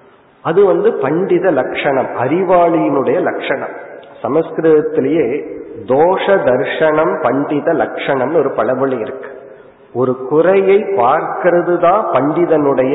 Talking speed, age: 85 wpm, 50-69